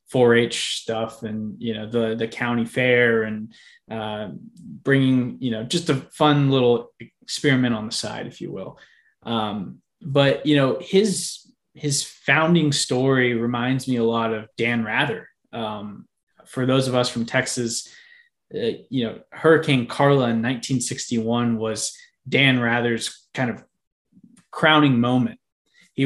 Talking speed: 145 wpm